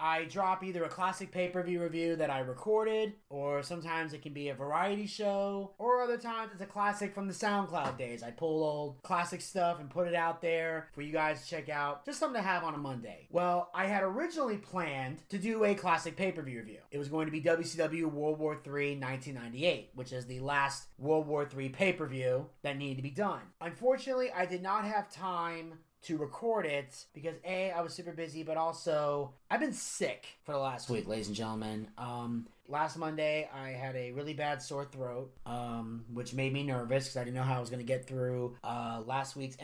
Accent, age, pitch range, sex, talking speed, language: American, 30-49, 135-175 Hz, male, 215 wpm, English